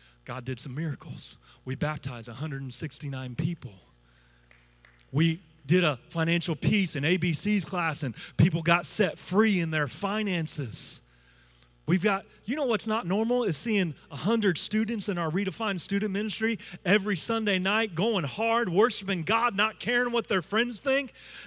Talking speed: 150 wpm